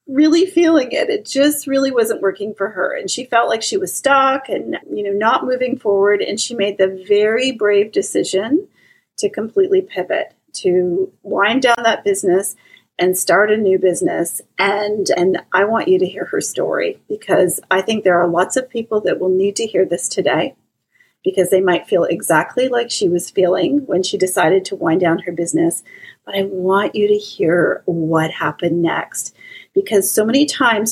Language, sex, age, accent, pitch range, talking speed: English, female, 40-59, American, 180-290 Hz, 190 wpm